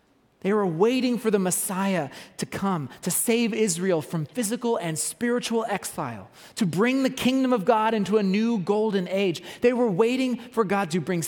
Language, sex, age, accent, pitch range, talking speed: English, male, 30-49, American, 150-205 Hz, 180 wpm